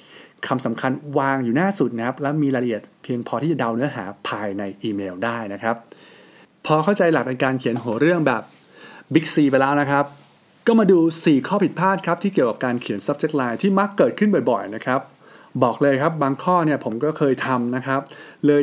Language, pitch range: English, 125-165 Hz